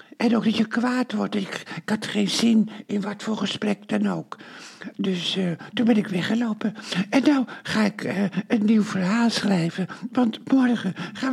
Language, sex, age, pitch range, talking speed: Dutch, male, 60-79, 205-245 Hz, 185 wpm